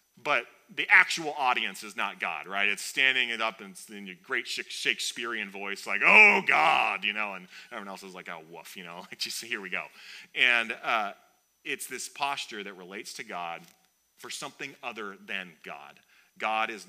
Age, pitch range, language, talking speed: 30-49, 95-150 Hz, English, 190 wpm